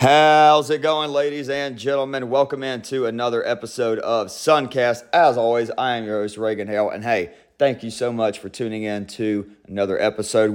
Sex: male